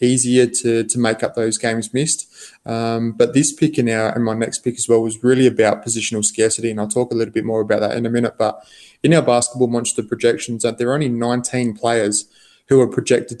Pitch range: 115-120 Hz